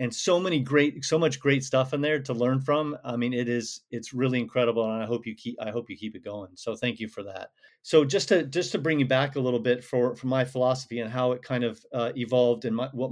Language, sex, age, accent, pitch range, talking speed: English, male, 40-59, American, 115-130 Hz, 280 wpm